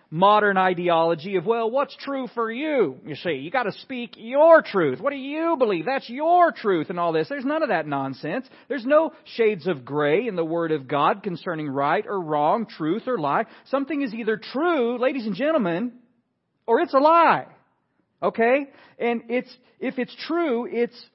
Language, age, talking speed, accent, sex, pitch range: English, 40-59, 185 wpm, American, male, 155-235 Hz